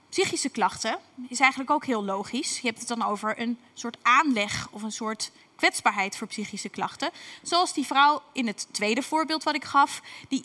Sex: female